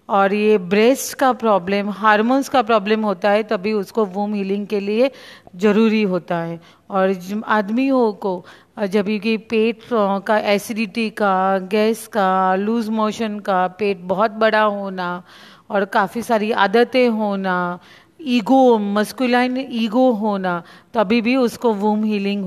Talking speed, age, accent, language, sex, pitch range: 135 wpm, 40-59, native, Hindi, female, 205-240 Hz